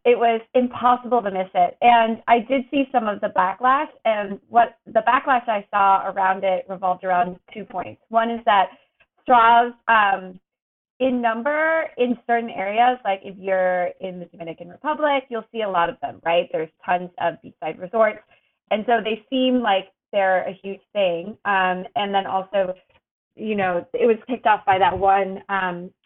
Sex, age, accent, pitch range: female, 30-49, American, 185-235 Hz